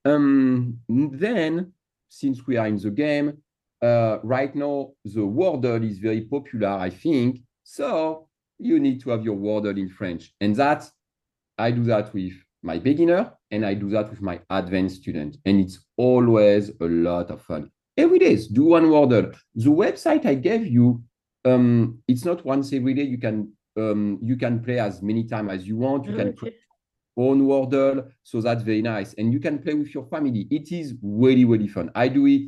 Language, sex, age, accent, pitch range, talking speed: English, male, 40-59, French, 105-145 Hz, 190 wpm